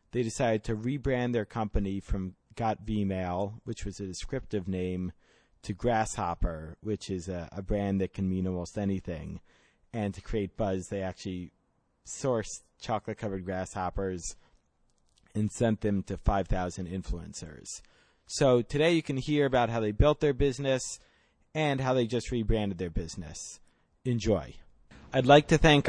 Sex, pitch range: male, 95-120 Hz